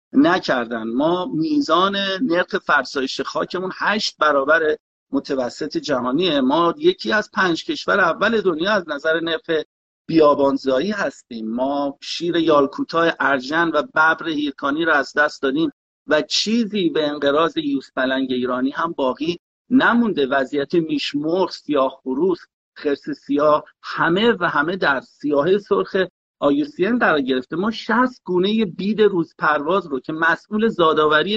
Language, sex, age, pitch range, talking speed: Persian, male, 50-69, 145-215 Hz, 130 wpm